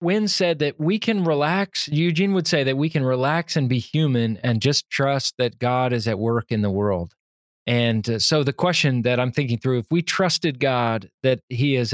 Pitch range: 115-150 Hz